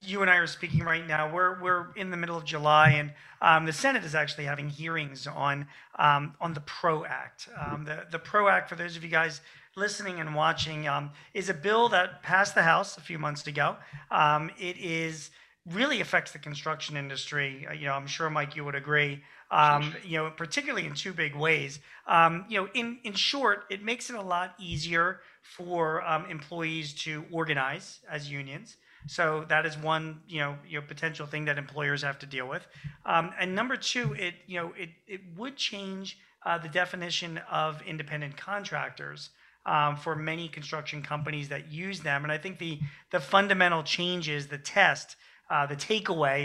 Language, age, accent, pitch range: English, 40-59, American, 150-180 Hz